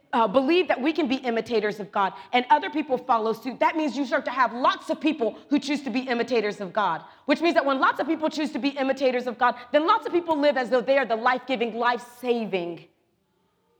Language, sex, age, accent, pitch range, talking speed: English, female, 40-59, American, 195-275 Hz, 240 wpm